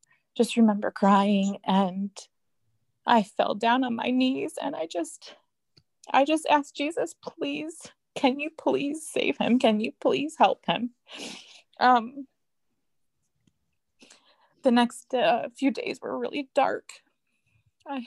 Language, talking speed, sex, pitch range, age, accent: English, 125 wpm, female, 205-265 Hz, 20-39, American